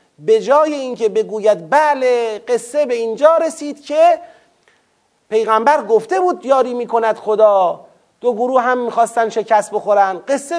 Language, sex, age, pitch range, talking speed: Persian, male, 40-59, 190-280 Hz, 135 wpm